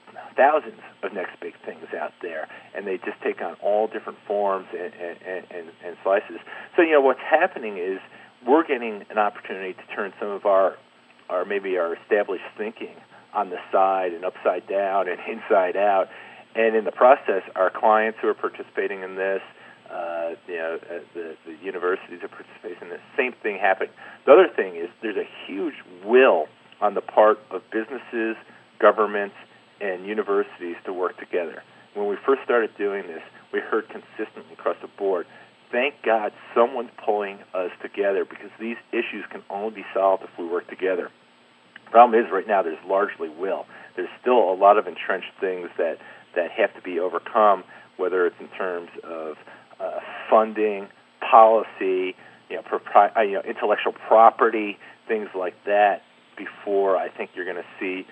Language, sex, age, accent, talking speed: English, male, 40-59, American, 175 wpm